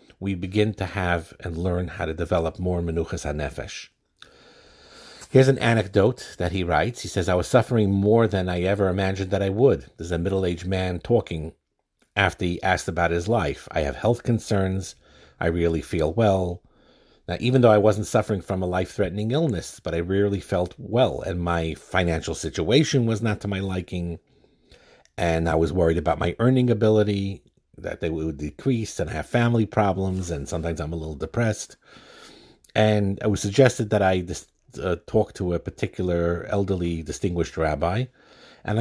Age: 50-69